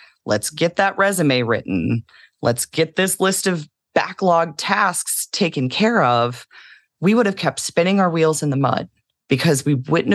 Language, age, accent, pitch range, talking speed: English, 30-49, American, 125-180 Hz, 165 wpm